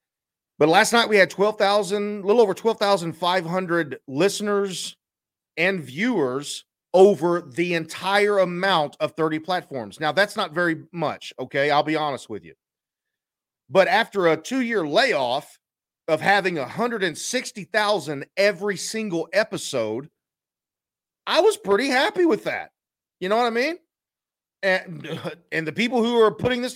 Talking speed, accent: 135 wpm, American